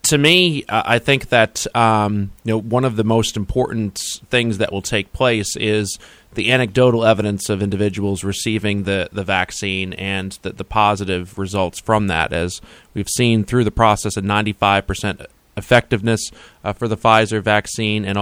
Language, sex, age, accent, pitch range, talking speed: English, male, 20-39, American, 100-120 Hz, 170 wpm